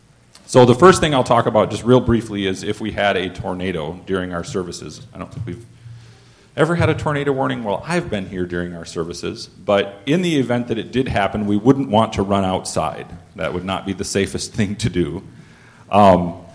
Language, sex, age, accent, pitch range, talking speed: English, male, 40-59, American, 95-120 Hz, 215 wpm